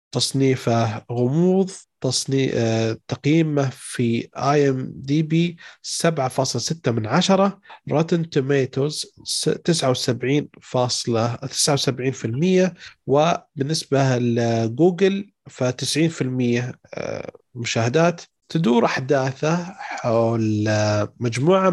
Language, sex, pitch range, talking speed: Arabic, male, 120-155 Hz, 65 wpm